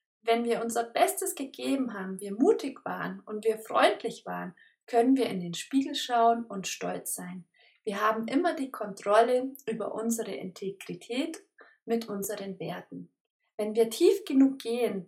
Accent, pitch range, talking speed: German, 205-265 Hz, 150 wpm